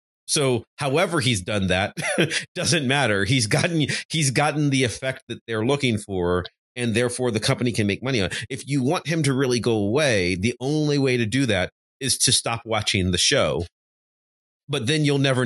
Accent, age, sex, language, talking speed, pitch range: American, 30-49, male, English, 190 wpm, 105-140 Hz